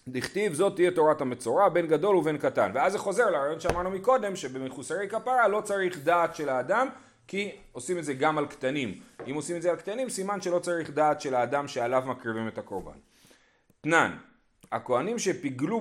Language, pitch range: Hebrew, 130-195 Hz